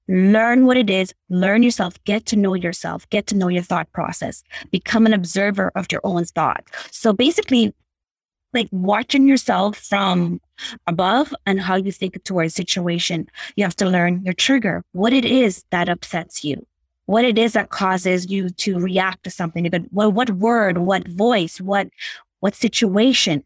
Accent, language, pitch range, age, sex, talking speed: American, English, 180-225 Hz, 20-39, female, 170 wpm